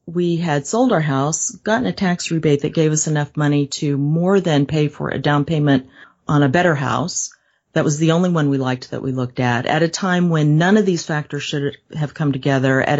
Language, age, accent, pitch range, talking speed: English, 40-59, American, 140-175 Hz, 230 wpm